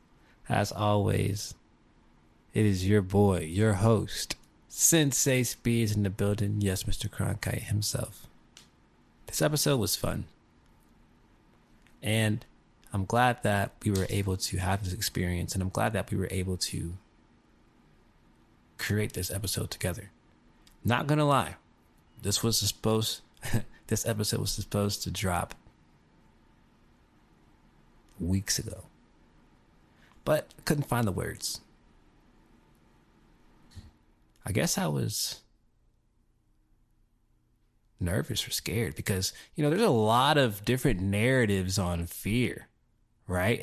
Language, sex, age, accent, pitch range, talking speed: English, male, 20-39, American, 90-115 Hz, 115 wpm